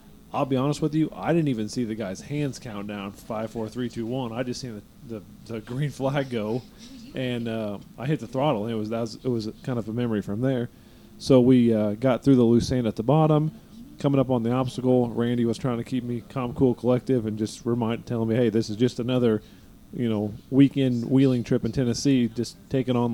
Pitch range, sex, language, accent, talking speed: 115-145 Hz, male, English, American, 230 wpm